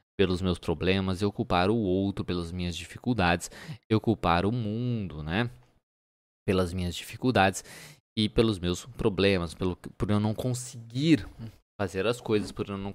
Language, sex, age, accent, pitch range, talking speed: Portuguese, male, 20-39, Brazilian, 95-115 Hz, 155 wpm